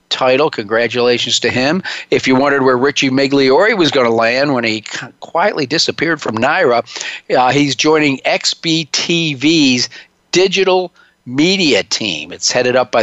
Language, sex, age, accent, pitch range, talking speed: English, male, 50-69, American, 120-145 Hz, 145 wpm